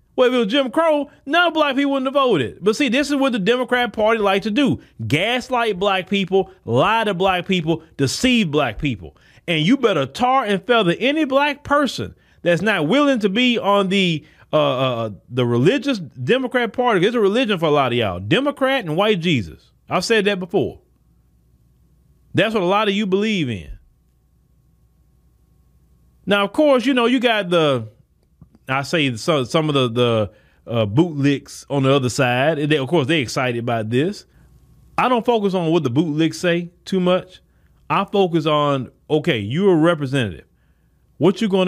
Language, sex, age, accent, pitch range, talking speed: English, male, 30-49, American, 130-210 Hz, 185 wpm